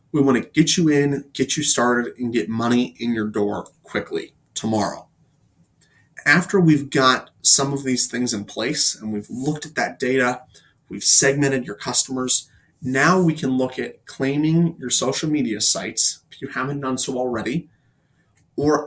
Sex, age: male, 30-49